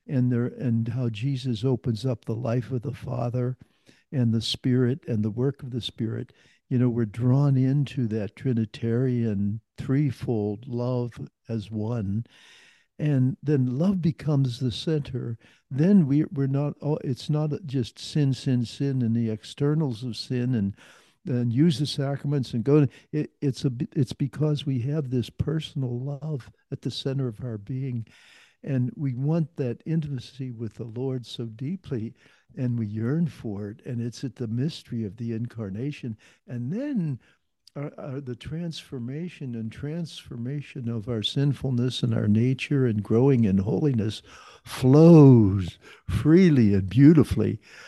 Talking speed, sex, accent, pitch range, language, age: 150 wpm, male, American, 115-140 Hz, English, 60-79